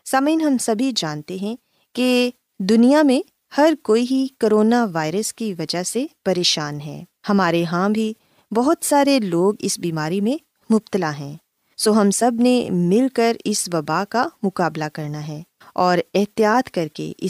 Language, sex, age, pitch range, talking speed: Urdu, female, 20-39, 170-245 Hz, 160 wpm